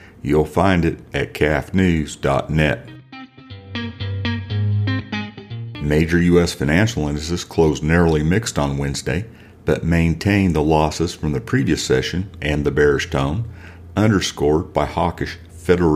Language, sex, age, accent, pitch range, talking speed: English, male, 50-69, American, 75-95 Hz, 115 wpm